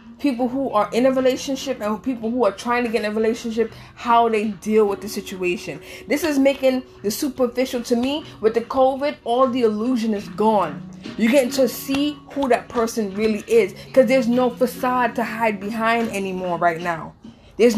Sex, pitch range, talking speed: female, 215-265 Hz, 190 wpm